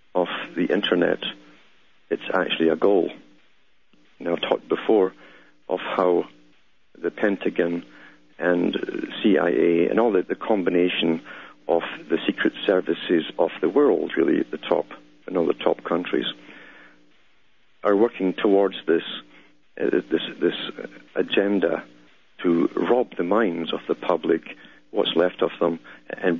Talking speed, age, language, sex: 125 wpm, 60-79, English, male